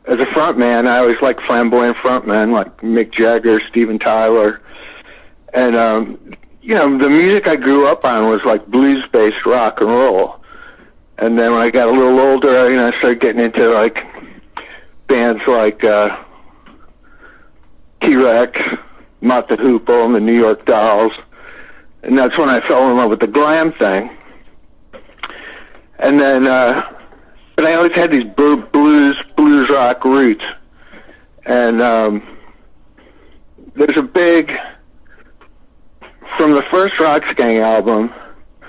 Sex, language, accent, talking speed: male, English, American, 145 wpm